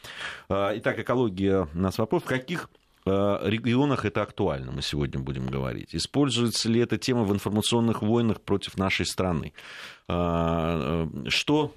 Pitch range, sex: 75-110 Hz, male